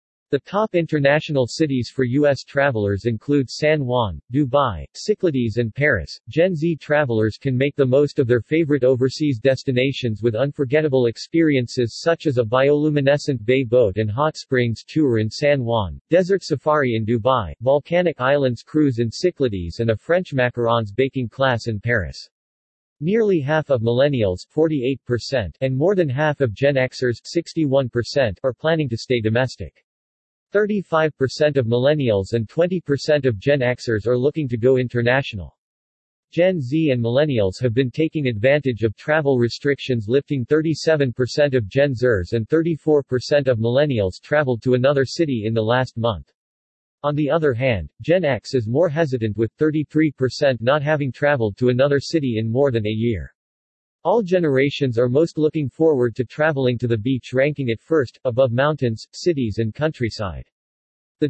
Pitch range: 115-150 Hz